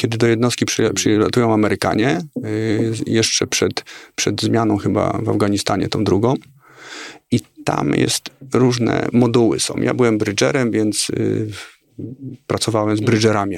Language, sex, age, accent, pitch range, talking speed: Polish, male, 40-59, native, 105-125 Hz, 135 wpm